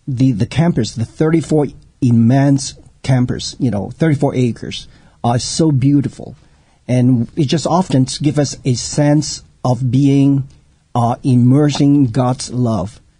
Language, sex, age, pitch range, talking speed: English, male, 50-69, 115-135 Hz, 135 wpm